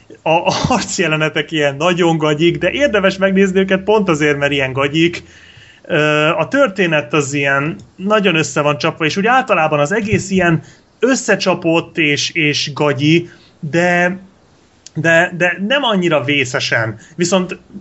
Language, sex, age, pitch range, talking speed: Hungarian, male, 30-49, 135-170 Hz, 130 wpm